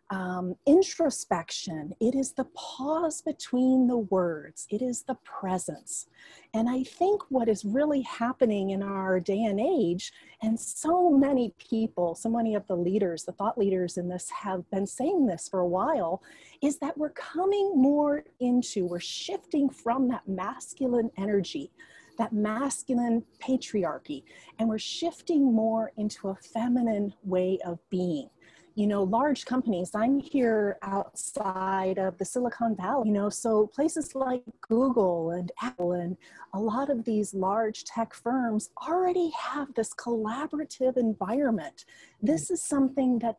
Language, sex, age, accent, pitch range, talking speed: English, female, 30-49, American, 200-285 Hz, 150 wpm